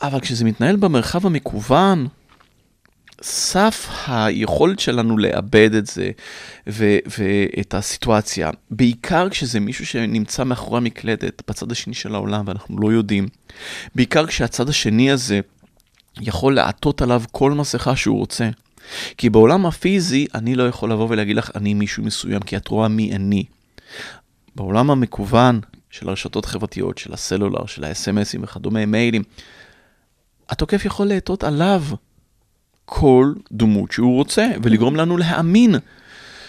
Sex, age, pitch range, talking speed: male, 30-49, 105-130 Hz, 125 wpm